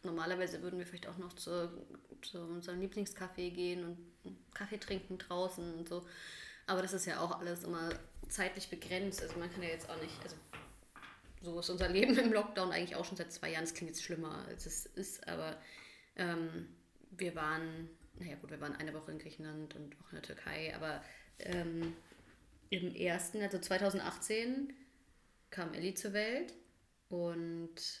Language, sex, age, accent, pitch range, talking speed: German, female, 20-39, German, 165-185 Hz, 175 wpm